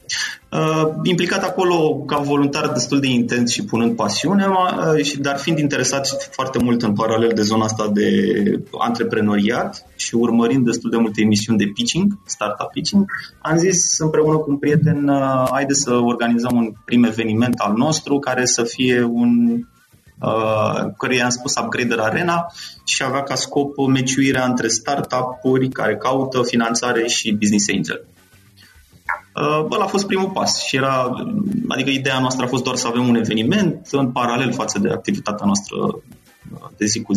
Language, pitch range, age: Romanian, 115-150 Hz, 20-39